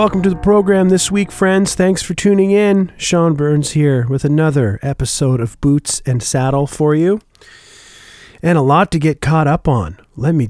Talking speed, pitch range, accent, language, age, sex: 190 wpm, 120-160 Hz, American, English, 40-59, male